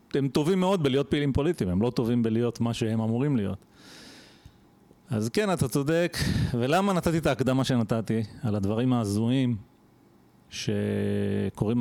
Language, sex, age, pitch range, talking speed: Hebrew, male, 40-59, 110-155 Hz, 135 wpm